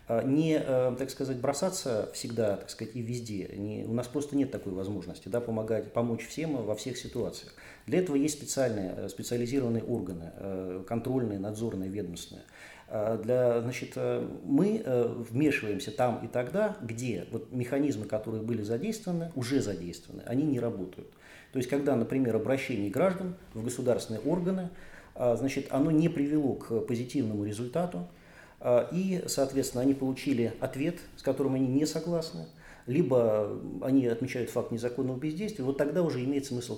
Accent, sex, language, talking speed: native, male, Russian, 140 wpm